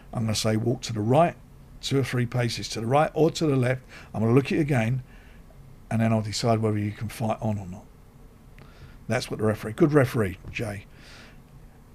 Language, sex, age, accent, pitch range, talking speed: English, male, 50-69, British, 115-145 Hz, 220 wpm